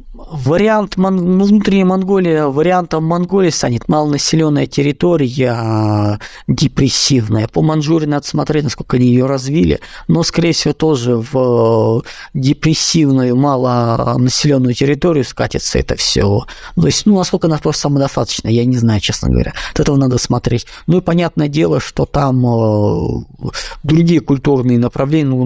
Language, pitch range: Russian, 120-155 Hz